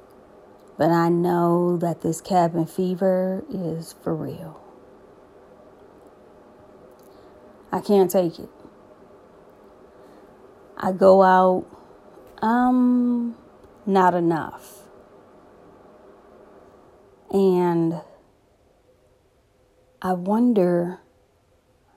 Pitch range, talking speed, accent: 170-205 Hz, 65 wpm, American